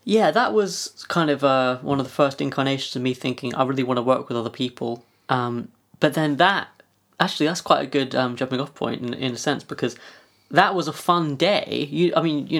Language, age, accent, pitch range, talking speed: English, 20-39, British, 120-145 Hz, 230 wpm